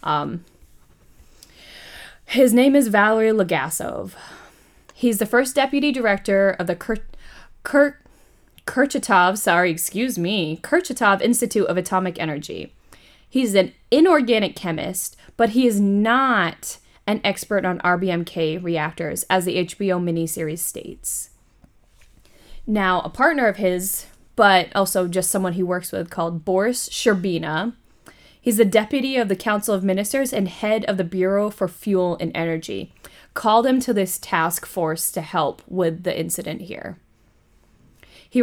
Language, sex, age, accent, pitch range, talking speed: English, female, 20-39, American, 170-220 Hz, 135 wpm